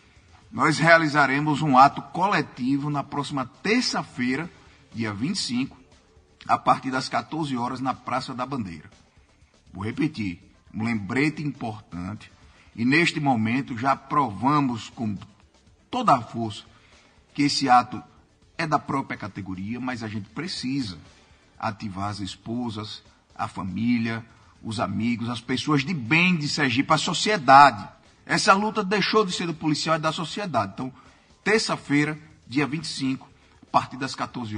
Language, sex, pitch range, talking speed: Portuguese, male, 105-140 Hz, 135 wpm